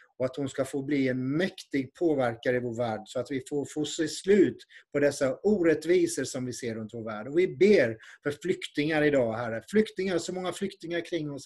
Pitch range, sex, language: 130-165 Hz, male, Swedish